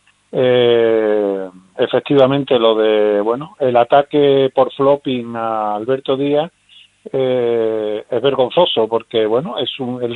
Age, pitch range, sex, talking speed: 40-59, 125-170 Hz, male, 120 wpm